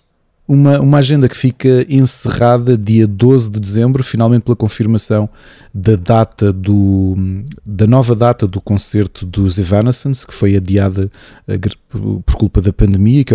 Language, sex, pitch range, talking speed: Portuguese, male, 100-120 Hz, 140 wpm